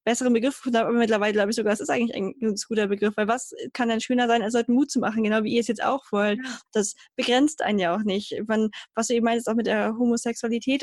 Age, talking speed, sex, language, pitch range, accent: 10-29, 260 wpm, female, German, 210-240 Hz, German